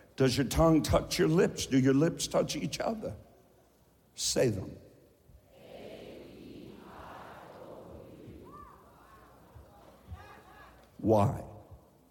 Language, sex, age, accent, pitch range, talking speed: English, male, 60-79, American, 100-145 Hz, 75 wpm